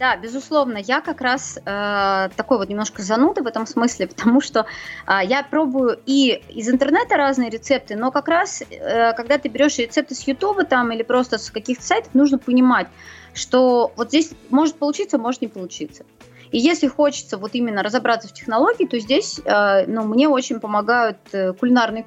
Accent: native